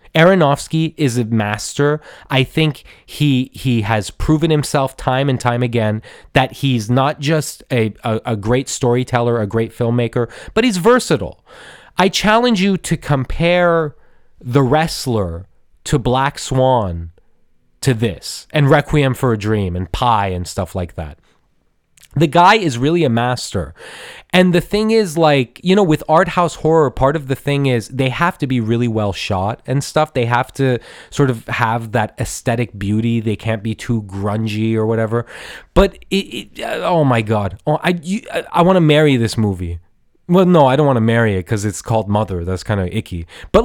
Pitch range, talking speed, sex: 115-160 Hz, 180 wpm, male